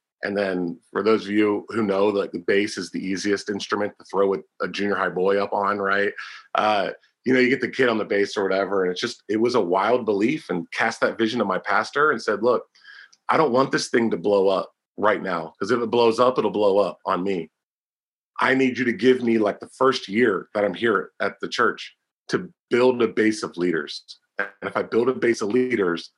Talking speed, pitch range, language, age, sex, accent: 245 wpm, 100-125 Hz, English, 30-49, male, American